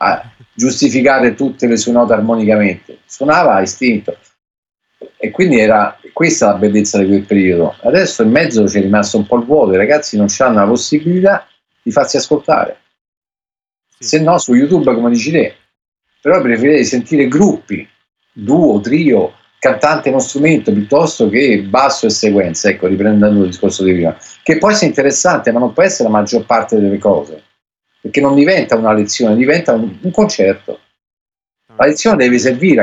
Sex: male